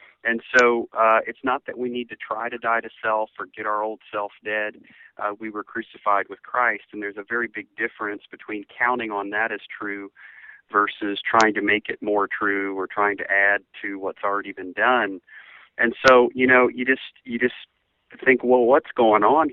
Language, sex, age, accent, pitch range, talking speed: English, male, 40-59, American, 105-120 Hz, 205 wpm